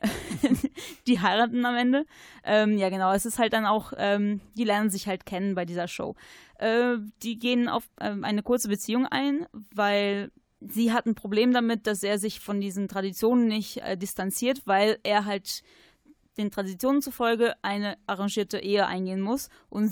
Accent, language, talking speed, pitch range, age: German, German, 170 wpm, 195-230 Hz, 20-39